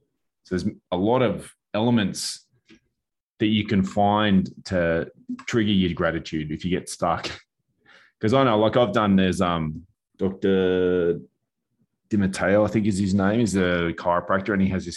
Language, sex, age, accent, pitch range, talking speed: English, male, 20-39, Australian, 85-105 Hz, 160 wpm